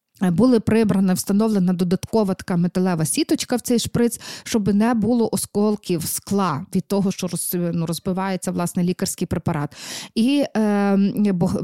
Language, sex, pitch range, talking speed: Ukrainian, female, 190-240 Hz, 130 wpm